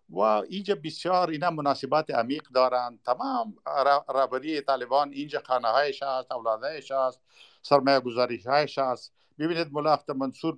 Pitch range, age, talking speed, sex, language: 130-155 Hz, 50-69, 115 wpm, male, Persian